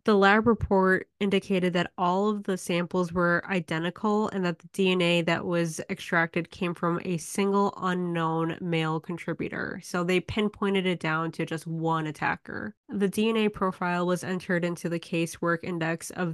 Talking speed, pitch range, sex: 160 wpm, 165-190 Hz, female